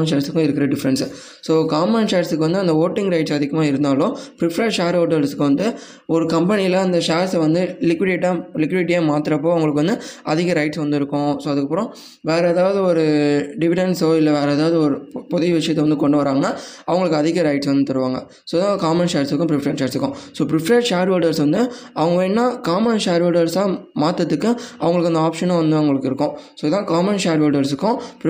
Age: 20-39